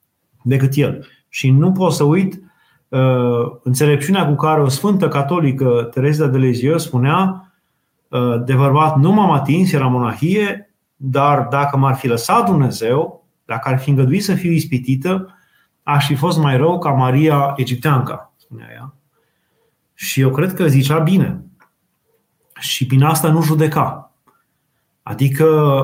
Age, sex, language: 30-49, male, Romanian